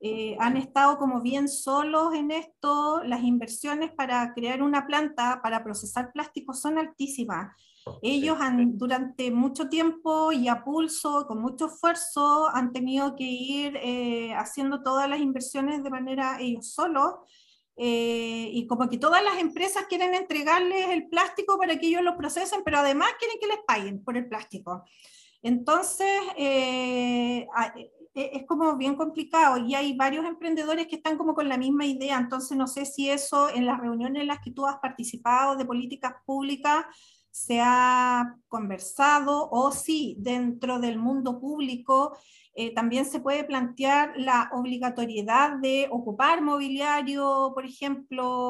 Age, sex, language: 40-59, female, Spanish